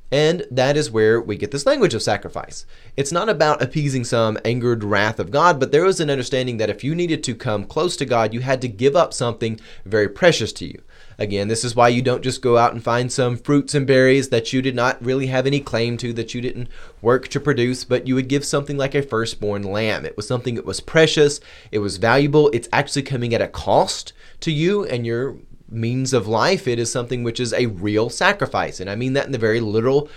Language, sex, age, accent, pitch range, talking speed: English, male, 30-49, American, 115-140 Hz, 240 wpm